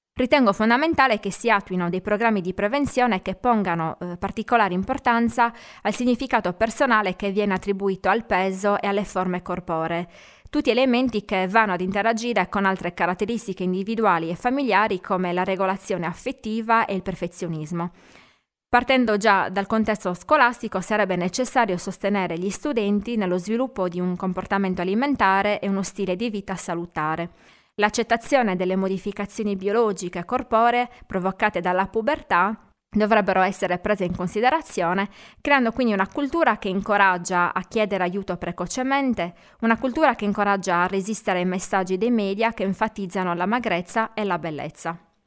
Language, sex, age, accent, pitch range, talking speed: Italian, female, 20-39, native, 185-230 Hz, 140 wpm